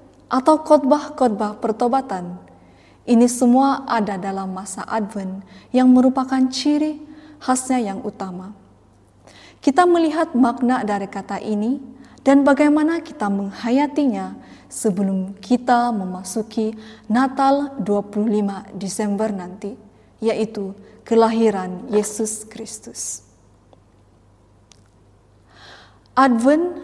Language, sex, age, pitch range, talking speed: Indonesian, female, 20-39, 200-255 Hz, 85 wpm